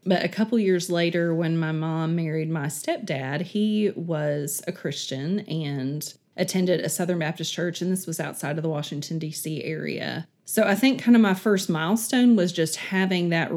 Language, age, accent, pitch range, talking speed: English, 30-49, American, 160-185 Hz, 185 wpm